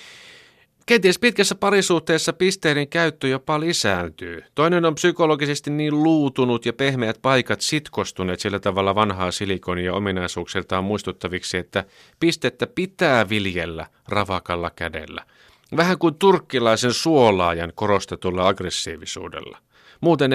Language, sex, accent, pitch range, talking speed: Finnish, male, native, 95-140 Hz, 105 wpm